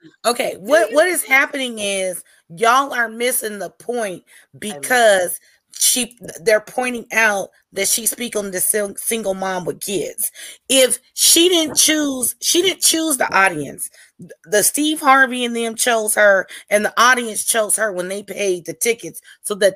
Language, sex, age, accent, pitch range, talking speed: English, female, 30-49, American, 200-245 Hz, 160 wpm